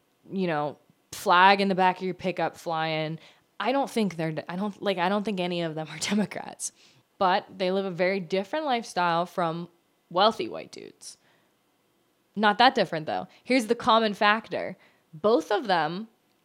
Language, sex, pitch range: English, female, 170-205 Hz